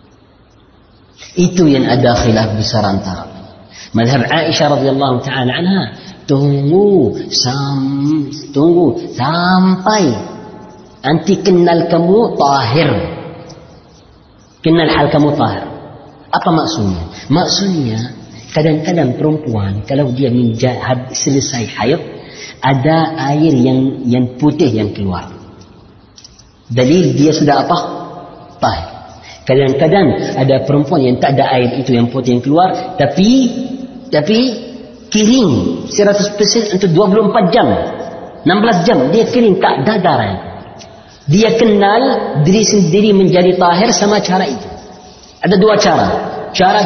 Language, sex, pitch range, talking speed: Indonesian, female, 130-210 Hz, 105 wpm